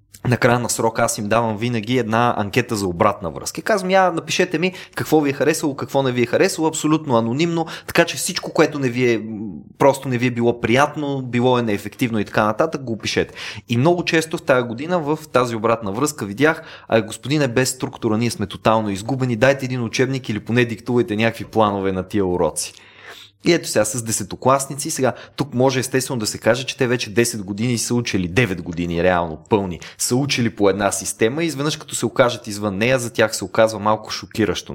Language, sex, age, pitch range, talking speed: Bulgarian, male, 20-39, 105-135 Hz, 205 wpm